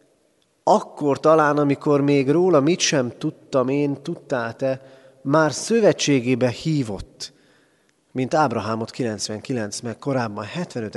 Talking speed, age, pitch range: 100 wpm, 30-49, 120-165 Hz